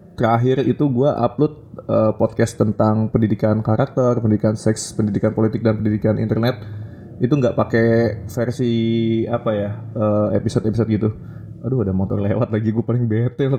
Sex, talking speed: male, 150 wpm